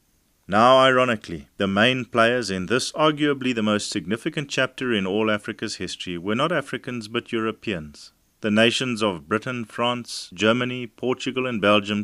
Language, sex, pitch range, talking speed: English, male, 95-120 Hz, 150 wpm